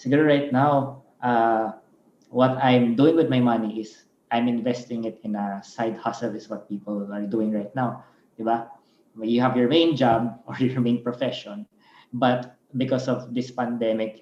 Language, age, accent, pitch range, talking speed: Filipino, 20-39, native, 110-125 Hz, 175 wpm